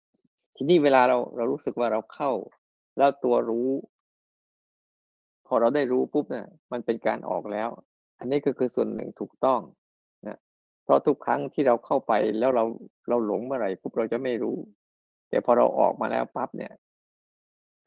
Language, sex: Thai, male